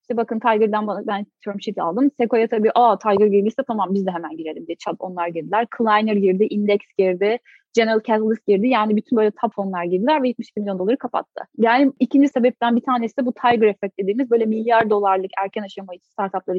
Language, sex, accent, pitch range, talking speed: Turkish, female, native, 200-260 Hz, 200 wpm